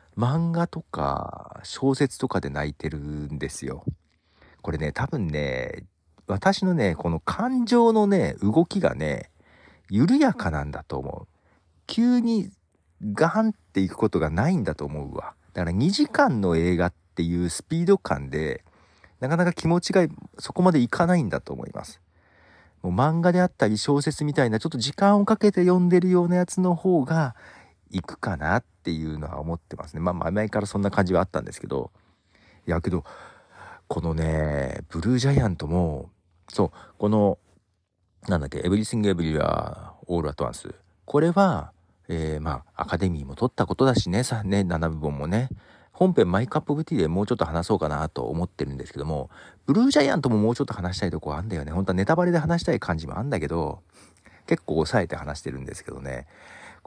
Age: 40-59